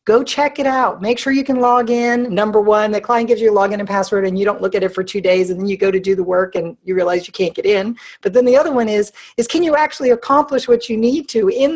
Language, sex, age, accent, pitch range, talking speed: English, female, 50-69, American, 200-260 Hz, 305 wpm